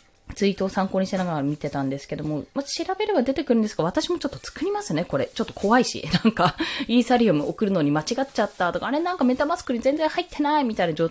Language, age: Japanese, 20-39